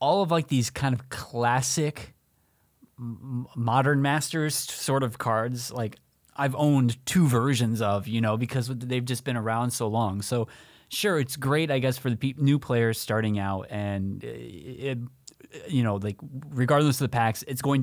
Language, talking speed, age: English, 165 wpm, 20-39